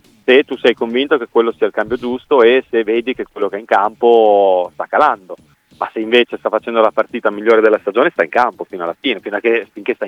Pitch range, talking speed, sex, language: 95-120 Hz, 250 wpm, male, Italian